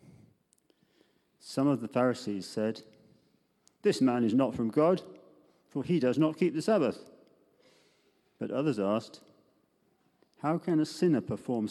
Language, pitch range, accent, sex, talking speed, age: English, 105-150 Hz, British, male, 135 wpm, 50-69